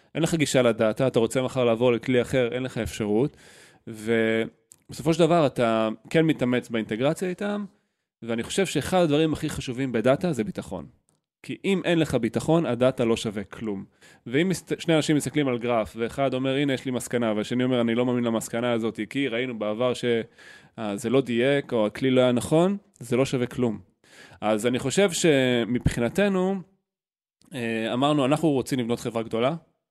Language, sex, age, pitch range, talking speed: Hebrew, male, 20-39, 115-140 Hz, 165 wpm